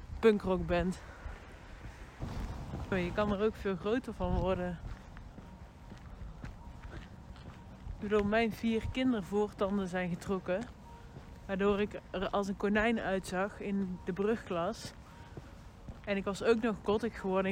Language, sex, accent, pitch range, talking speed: Dutch, female, Dutch, 190-225 Hz, 105 wpm